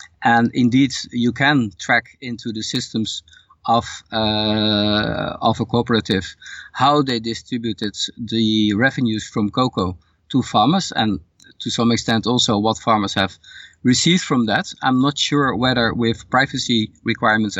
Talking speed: 135 wpm